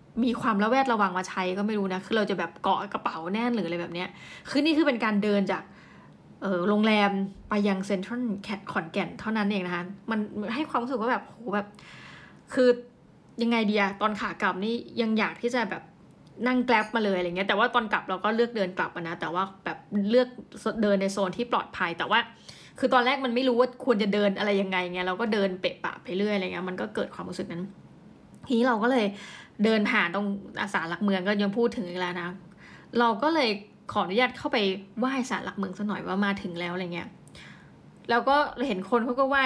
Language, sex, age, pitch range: Thai, female, 20-39, 190-230 Hz